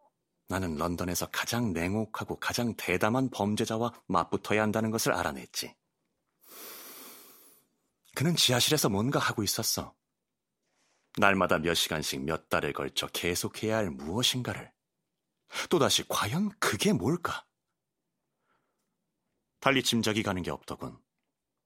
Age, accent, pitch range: 30-49, native, 95-125 Hz